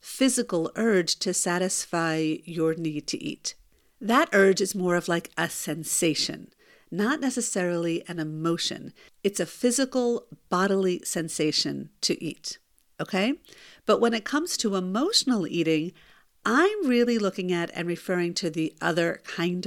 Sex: female